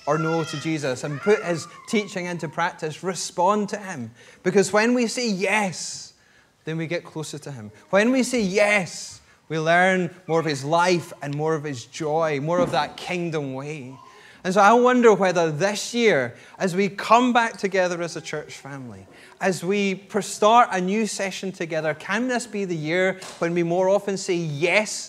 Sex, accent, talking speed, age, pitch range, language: male, British, 185 wpm, 20-39, 155-205 Hz, English